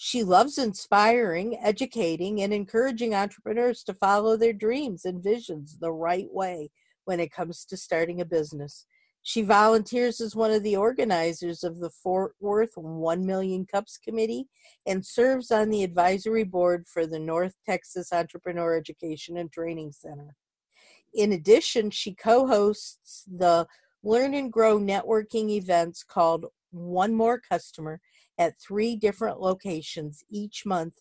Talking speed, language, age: 140 wpm, English, 50-69